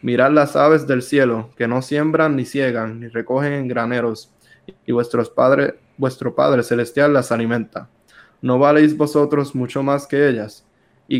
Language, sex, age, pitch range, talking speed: Spanish, male, 20-39, 120-145 Hz, 160 wpm